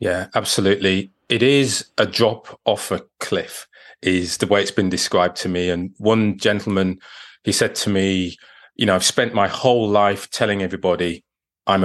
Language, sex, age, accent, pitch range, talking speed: English, male, 30-49, British, 95-120 Hz, 170 wpm